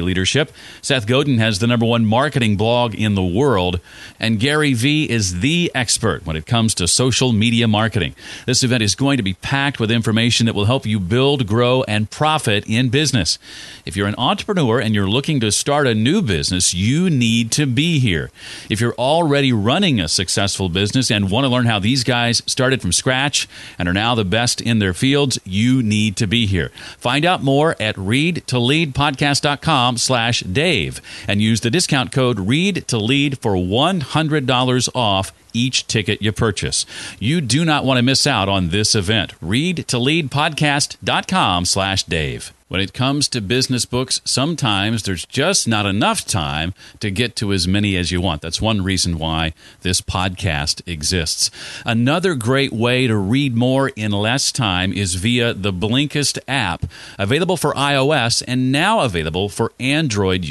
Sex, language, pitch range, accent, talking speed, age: male, English, 100-135 Hz, American, 180 wpm, 40-59